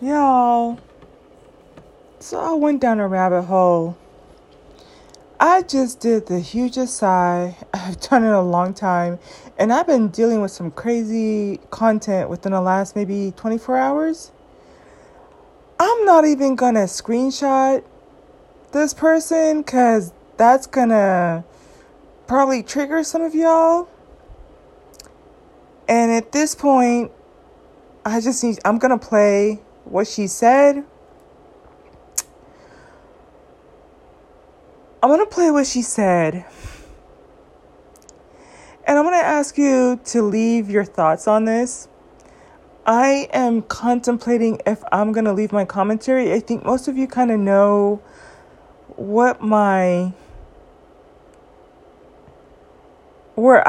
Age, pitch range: 20-39, 205-270 Hz